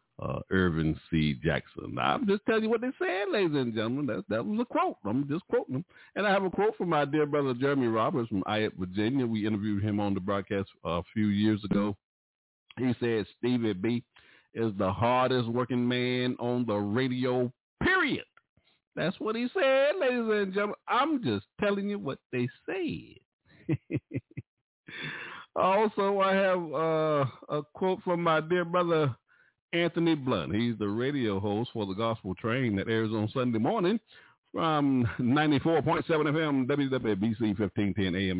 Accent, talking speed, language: American, 165 wpm, English